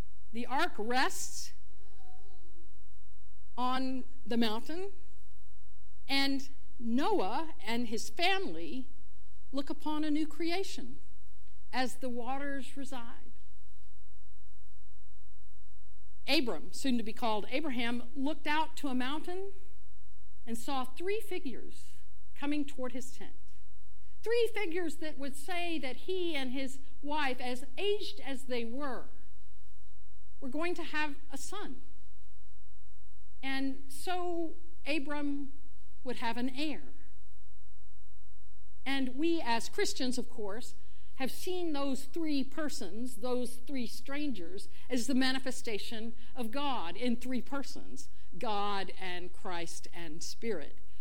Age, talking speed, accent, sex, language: 50-69, 110 wpm, American, female, English